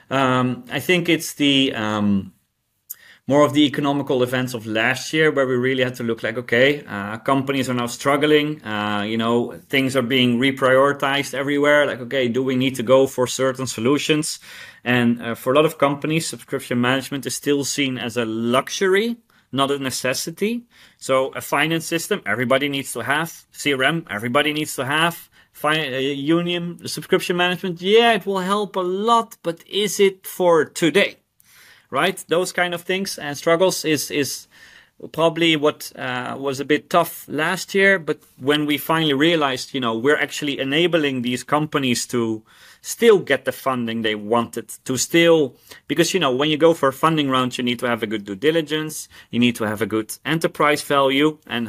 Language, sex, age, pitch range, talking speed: English, male, 30-49, 125-160 Hz, 180 wpm